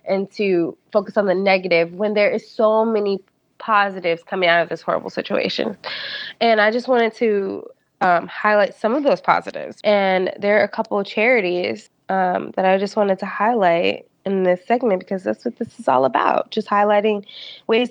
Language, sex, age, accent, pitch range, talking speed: English, female, 20-39, American, 175-210 Hz, 190 wpm